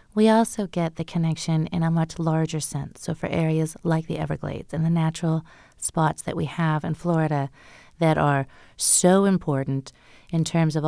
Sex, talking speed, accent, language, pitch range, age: female, 175 wpm, American, English, 155-195 Hz, 30-49